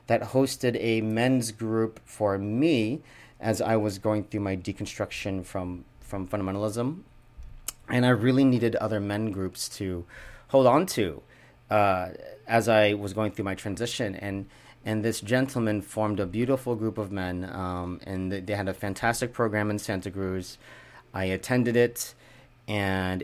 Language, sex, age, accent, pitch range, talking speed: English, male, 40-59, American, 100-115 Hz, 155 wpm